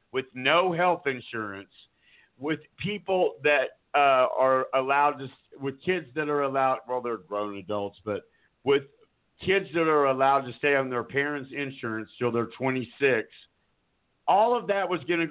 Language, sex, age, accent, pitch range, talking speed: English, male, 50-69, American, 115-155 Hz, 160 wpm